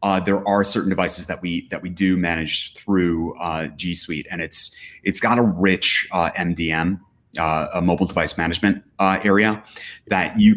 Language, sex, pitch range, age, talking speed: English, male, 80-95 Hz, 30-49, 180 wpm